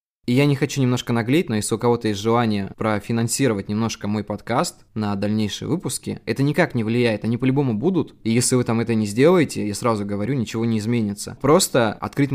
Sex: male